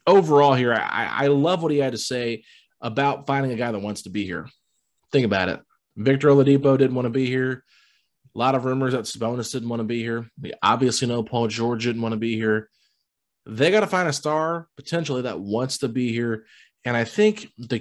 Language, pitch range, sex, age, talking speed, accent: English, 110-140 Hz, male, 20-39, 220 wpm, American